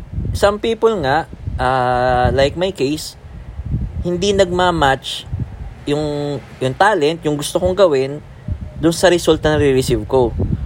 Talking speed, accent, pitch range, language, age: 125 wpm, Filipino, 130-185 Hz, English, 20-39